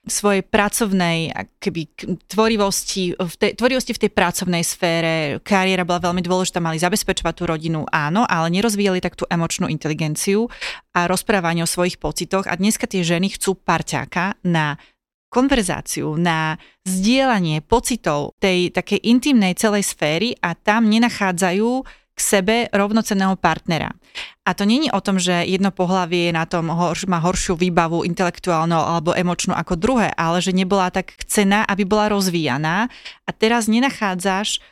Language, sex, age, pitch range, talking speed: Slovak, female, 30-49, 175-220 Hz, 140 wpm